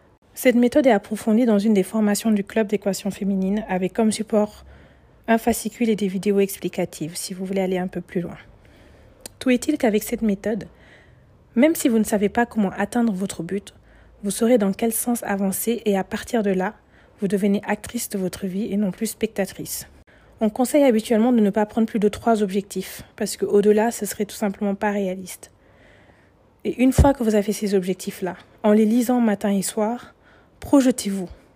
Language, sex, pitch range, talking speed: French, female, 195-230 Hz, 190 wpm